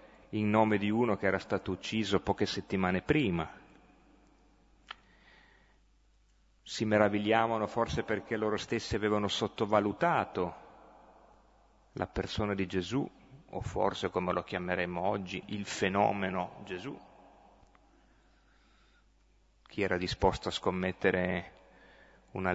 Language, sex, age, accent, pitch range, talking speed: Italian, male, 30-49, native, 95-115 Hz, 100 wpm